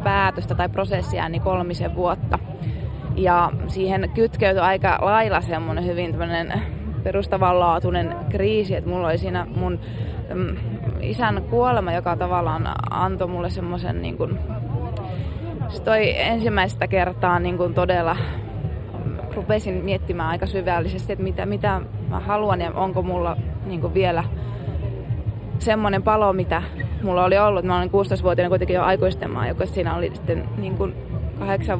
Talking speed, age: 130 wpm, 20-39